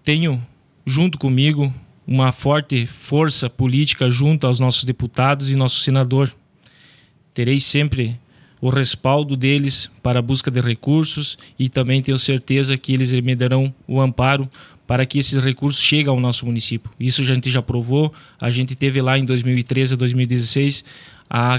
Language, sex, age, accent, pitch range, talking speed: Portuguese, male, 20-39, Brazilian, 125-140 Hz, 155 wpm